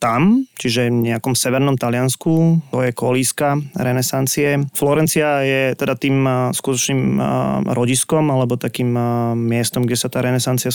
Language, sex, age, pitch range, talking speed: Slovak, male, 20-39, 125-140 Hz, 135 wpm